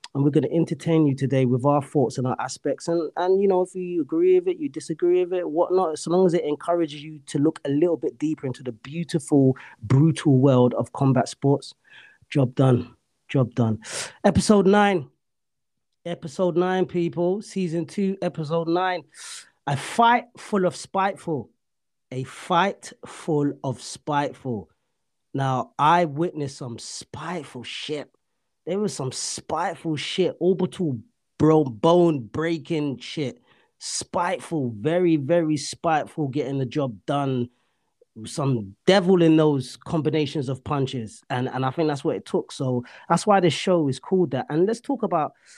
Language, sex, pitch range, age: English, male, 135-180 Hz, 30-49